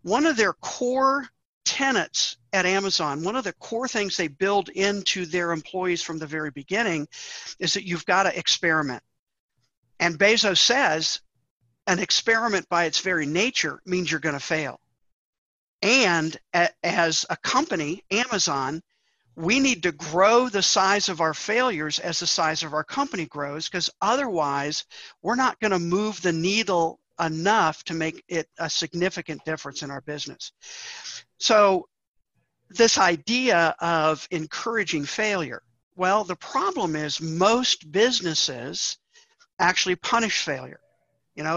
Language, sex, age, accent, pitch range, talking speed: English, male, 50-69, American, 160-205 Hz, 140 wpm